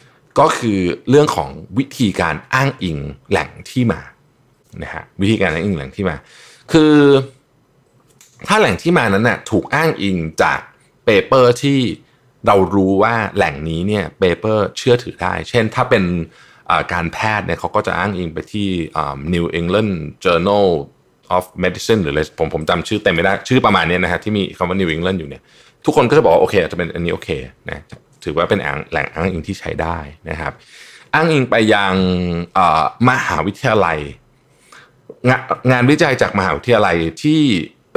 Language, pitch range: Thai, 90-130 Hz